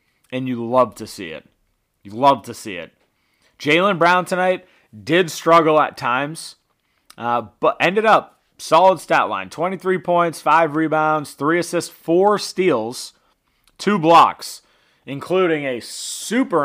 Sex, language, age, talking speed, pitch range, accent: male, English, 30-49, 135 wpm, 125-175 Hz, American